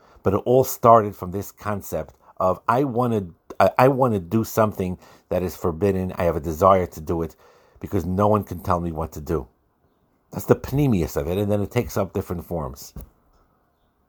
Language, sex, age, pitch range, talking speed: English, male, 50-69, 85-110 Hz, 195 wpm